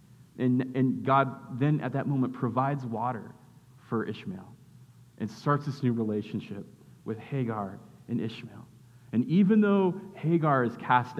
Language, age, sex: English, 30-49, male